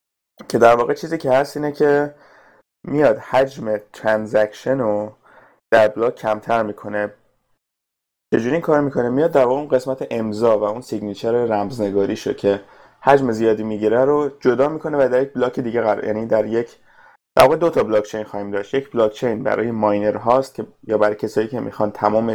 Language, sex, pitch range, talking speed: Persian, male, 105-130 Hz, 165 wpm